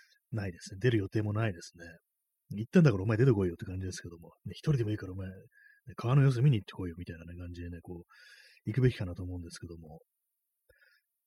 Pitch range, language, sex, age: 90-120 Hz, Japanese, male, 30-49